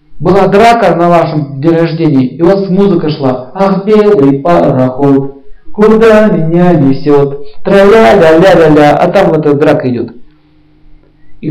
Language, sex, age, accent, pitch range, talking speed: Russian, male, 50-69, native, 150-195 Hz, 135 wpm